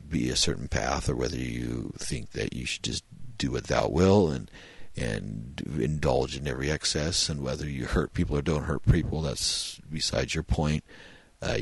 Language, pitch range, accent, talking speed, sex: English, 65-85 Hz, American, 185 wpm, male